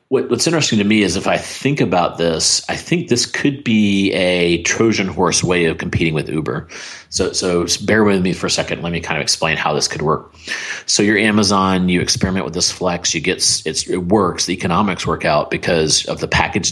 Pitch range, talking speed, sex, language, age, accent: 80-95 Hz, 220 wpm, male, English, 40-59, American